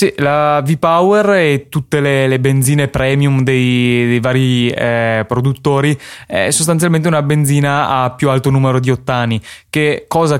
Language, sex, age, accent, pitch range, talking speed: Italian, male, 20-39, native, 130-150 Hz, 150 wpm